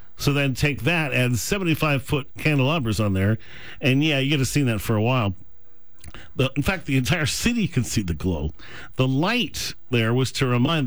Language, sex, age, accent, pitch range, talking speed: English, male, 50-69, American, 115-145 Hz, 195 wpm